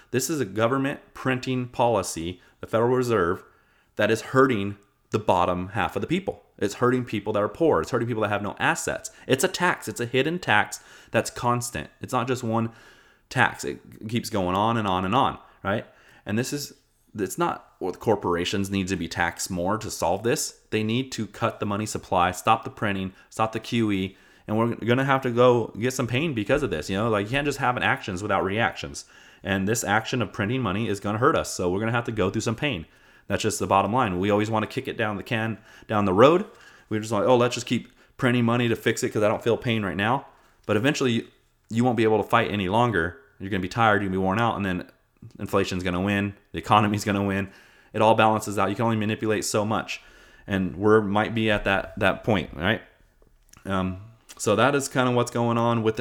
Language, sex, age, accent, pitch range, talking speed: English, male, 30-49, American, 100-120 Hz, 235 wpm